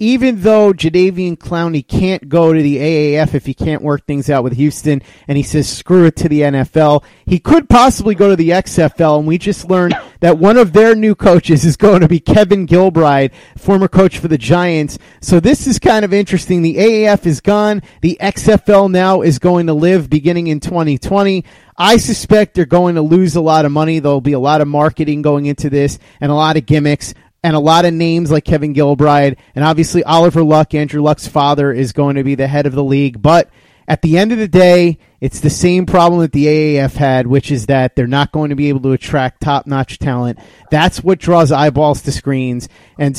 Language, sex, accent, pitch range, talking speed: English, male, American, 140-175 Hz, 220 wpm